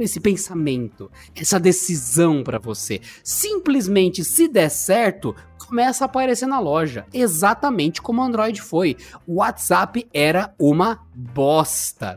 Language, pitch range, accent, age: Portuguese, 145-205 Hz, Brazilian, 20-39